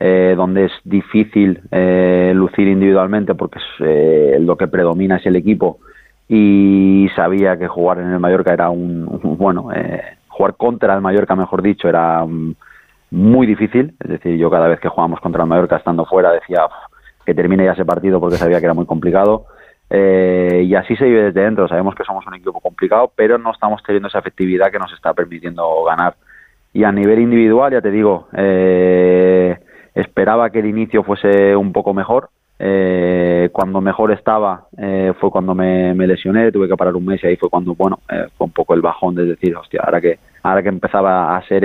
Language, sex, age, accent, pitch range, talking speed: Spanish, male, 30-49, Spanish, 85-100 Hz, 195 wpm